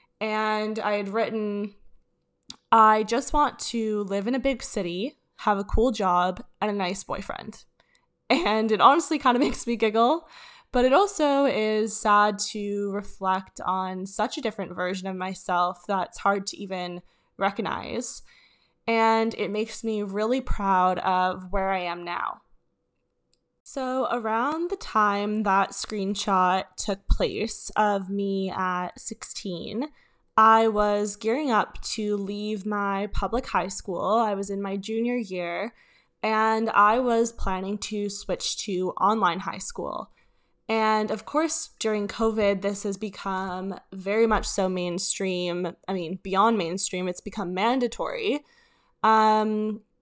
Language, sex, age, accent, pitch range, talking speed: English, female, 10-29, American, 195-225 Hz, 140 wpm